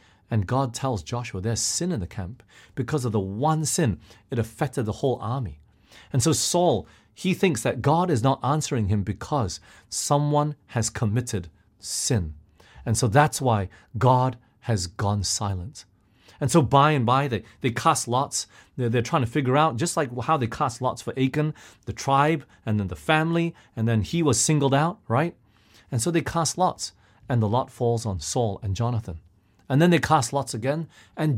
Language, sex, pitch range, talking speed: English, male, 100-140 Hz, 190 wpm